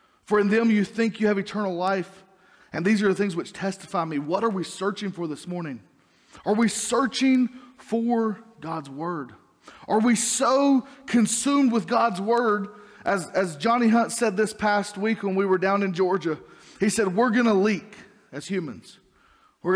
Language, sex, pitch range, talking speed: English, male, 175-230 Hz, 180 wpm